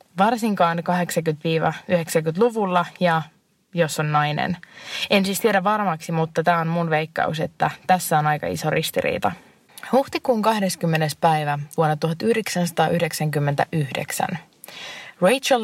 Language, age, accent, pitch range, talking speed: Finnish, 20-39, native, 165-215 Hz, 105 wpm